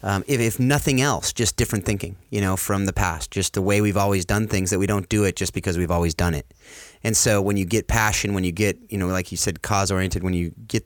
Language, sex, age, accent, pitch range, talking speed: English, male, 30-49, American, 90-105 Hz, 275 wpm